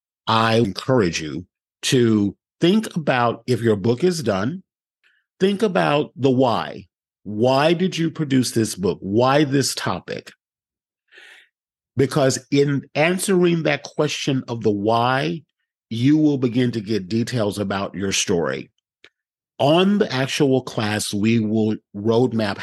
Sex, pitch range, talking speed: male, 105-145 Hz, 125 wpm